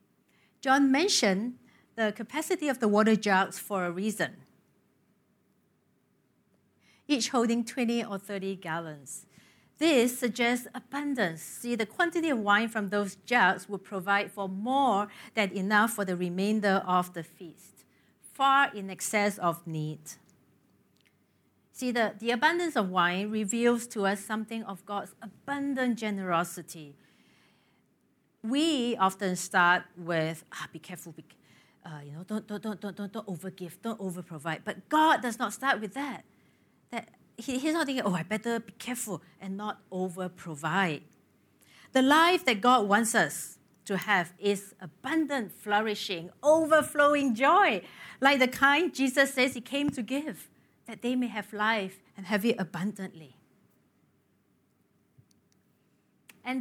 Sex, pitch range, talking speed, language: female, 185-250 Hz, 140 wpm, English